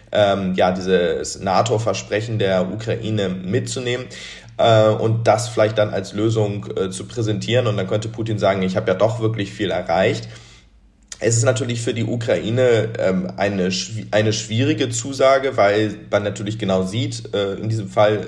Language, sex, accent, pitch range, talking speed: German, male, German, 95-110 Hz, 160 wpm